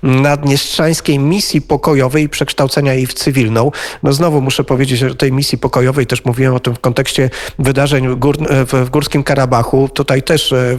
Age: 40-59